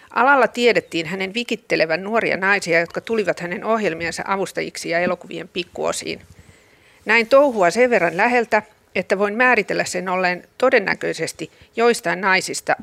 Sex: female